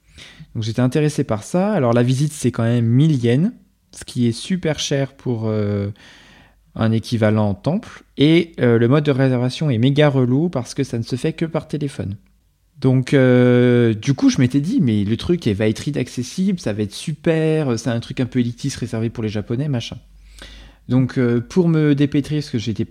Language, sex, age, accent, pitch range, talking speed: French, male, 20-39, French, 115-150 Hz, 200 wpm